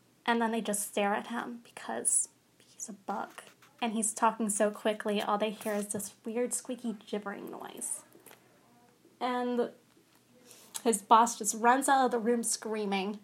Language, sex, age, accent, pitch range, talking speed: English, female, 20-39, American, 215-250 Hz, 160 wpm